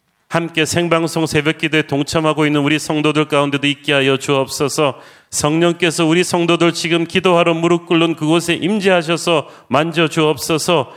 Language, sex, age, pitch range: Korean, male, 40-59, 140-170 Hz